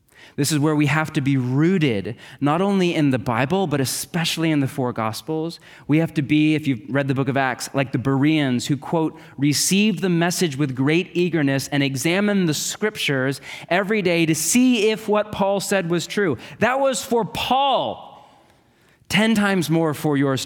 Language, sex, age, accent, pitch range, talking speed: English, male, 30-49, American, 135-185 Hz, 190 wpm